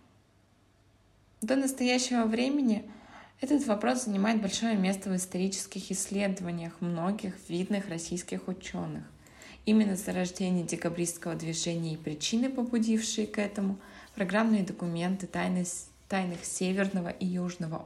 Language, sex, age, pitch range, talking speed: Russian, female, 20-39, 170-215 Hz, 105 wpm